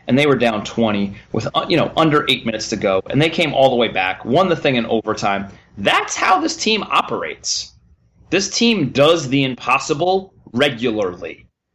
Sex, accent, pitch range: male, American, 115-160 Hz